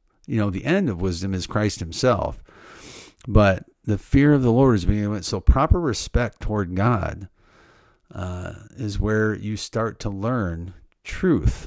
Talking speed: 160 wpm